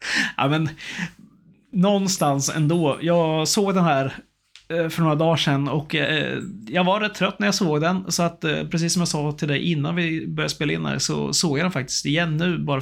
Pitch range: 145-185 Hz